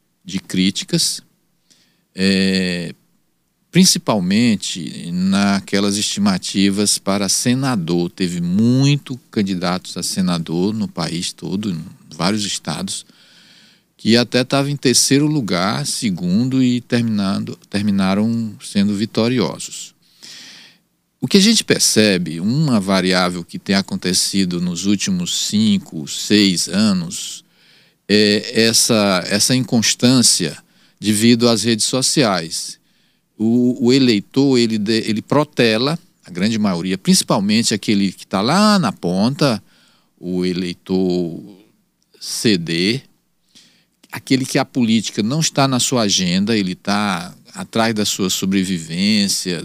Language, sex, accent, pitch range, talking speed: Portuguese, male, Brazilian, 95-150 Hz, 105 wpm